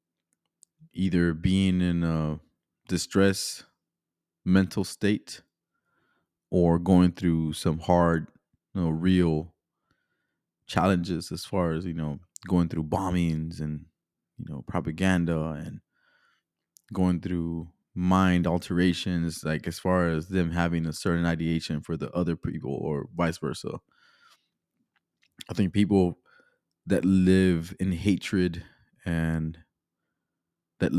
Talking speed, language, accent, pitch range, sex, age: 110 wpm, English, American, 85-95 Hz, male, 20-39